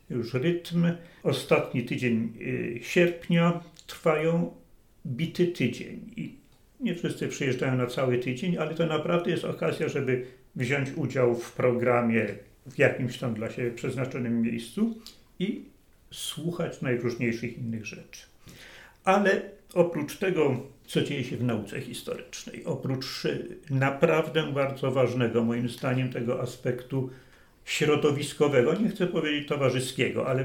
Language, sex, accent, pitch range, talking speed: Polish, male, native, 125-155 Hz, 120 wpm